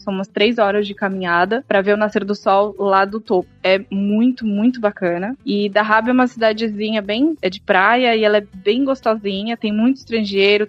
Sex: female